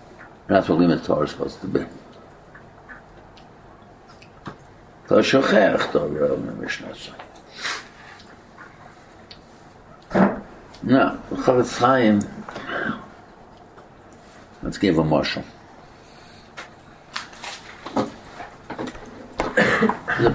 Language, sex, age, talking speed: English, male, 60-79, 40 wpm